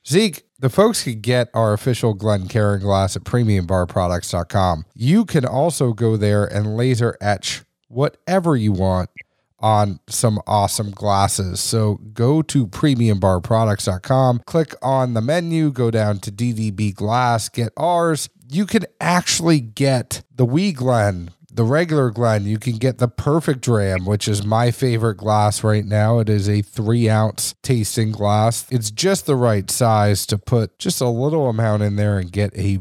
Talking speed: 160 wpm